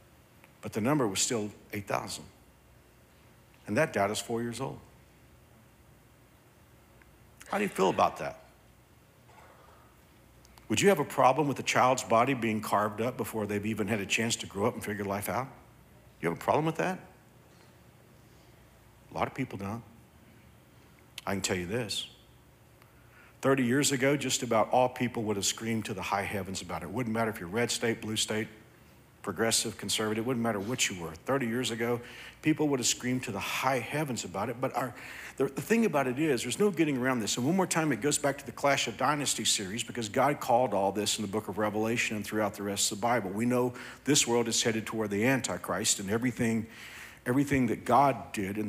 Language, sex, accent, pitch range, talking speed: English, male, American, 105-130 Hz, 200 wpm